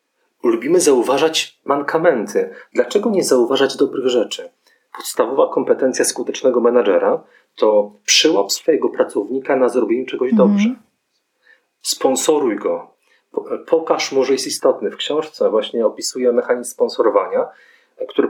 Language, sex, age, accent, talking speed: Polish, male, 40-59, native, 110 wpm